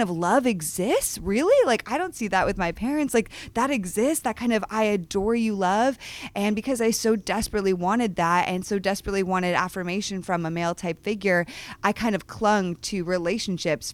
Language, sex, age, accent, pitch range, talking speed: English, female, 20-39, American, 170-215 Hz, 195 wpm